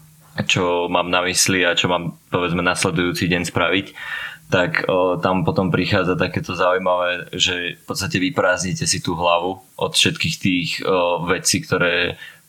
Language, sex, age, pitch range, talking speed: Slovak, male, 20-39, 90-100 Hz, 155 wpm